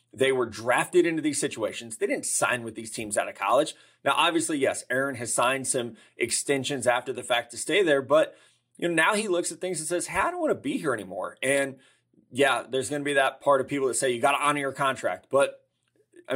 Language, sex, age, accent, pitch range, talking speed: English, male, 30-49, American, 120-155 Hz, 250 wpm